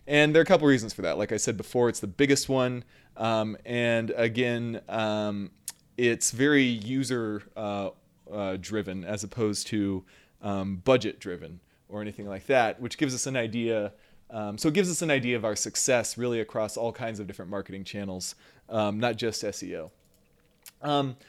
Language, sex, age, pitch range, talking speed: English, male, 30-49, 105-140 Hz, 180 wpm